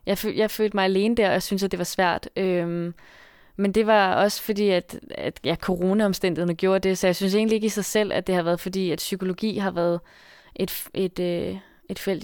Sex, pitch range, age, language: female, 180-200 Hz, 20-39, Danish